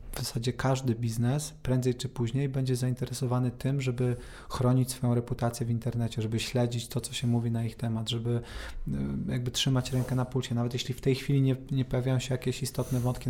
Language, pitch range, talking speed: Polish, 120-135 Hz, 195 wpm